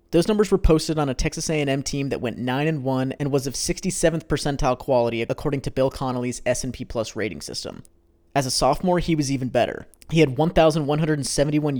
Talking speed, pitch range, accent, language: 185 wpm, 120-150 Hz, American, English